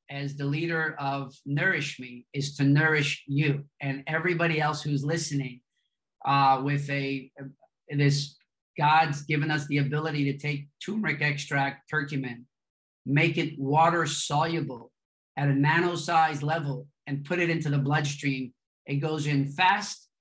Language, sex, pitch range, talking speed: English, male, 140-160 Hz, 145 wpm